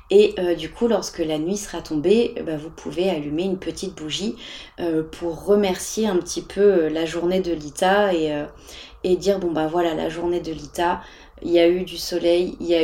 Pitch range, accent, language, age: 170-200 Hz, French, French, 20-39